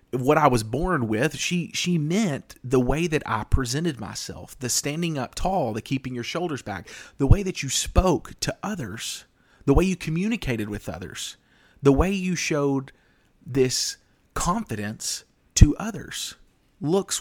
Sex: male